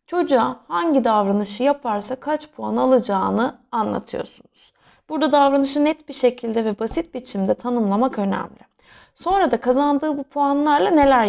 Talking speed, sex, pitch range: 130 wpm, female, 200-275 Hz